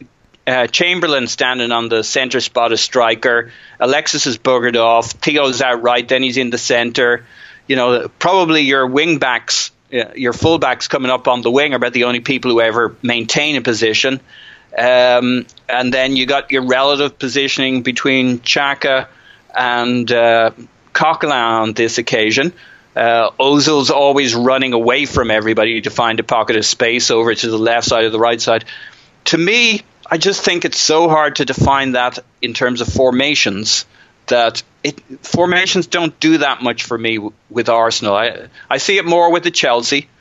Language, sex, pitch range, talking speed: English, male, 115-140 Hz, 175 wpm